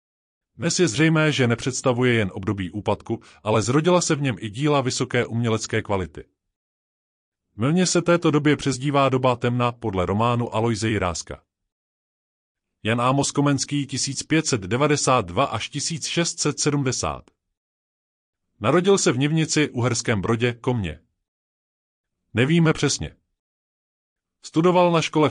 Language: Czech